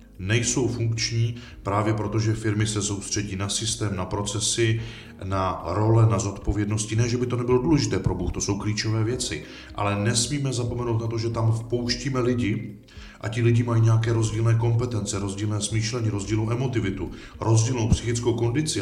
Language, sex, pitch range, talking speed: Czech, male, 95-115 Hz, 165 wpm